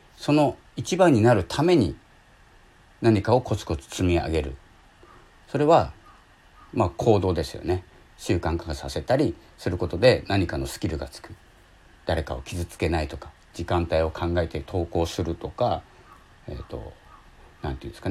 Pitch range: 75-100 Hz